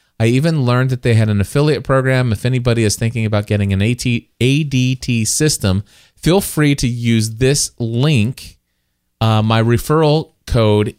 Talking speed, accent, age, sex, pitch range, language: 155 wpm, American, 30-49, male, 100-125 Hz, English